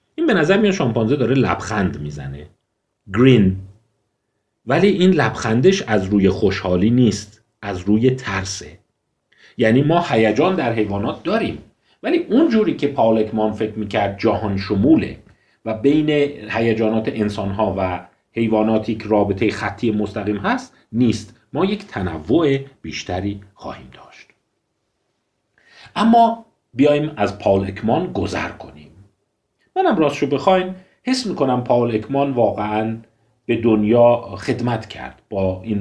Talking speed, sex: 120 wpm, male